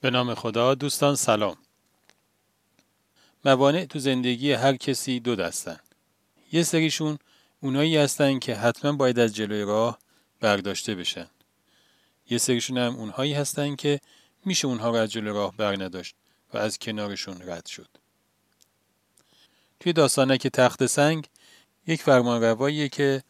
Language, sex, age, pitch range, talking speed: Persian, male, 40-59, 110-135 Hz, 130 wpm